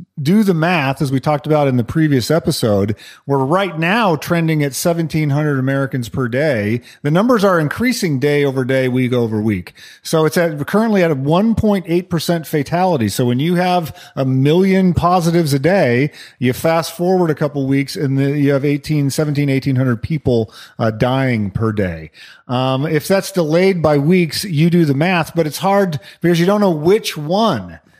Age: 40-59